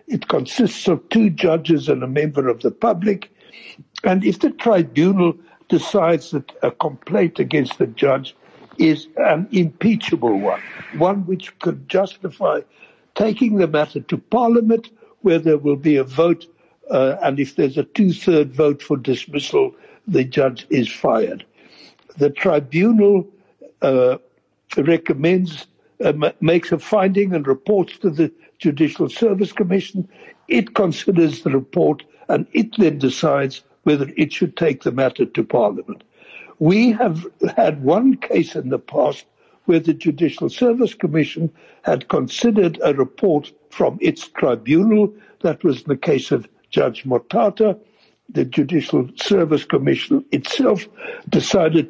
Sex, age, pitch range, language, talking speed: male, 60-79, 155-210 Hz, English, 135 wpm